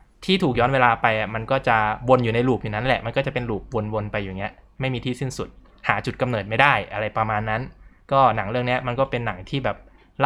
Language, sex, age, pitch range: Thai, male, 20-39, 115-145 Hz